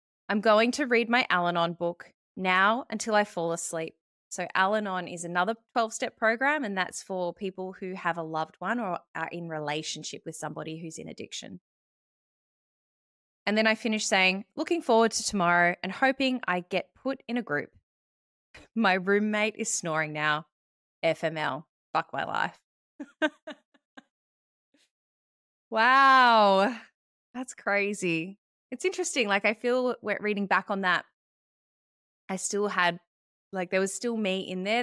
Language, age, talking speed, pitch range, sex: English, 20-39, 145 wpm, 170-220 Hz, female